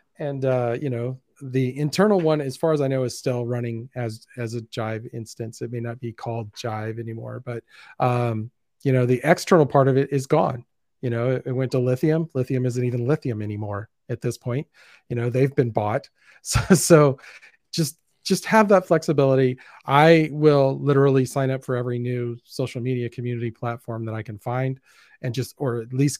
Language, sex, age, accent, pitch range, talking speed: English, male, 40-59, American, 120-145 Hz, 195 wpm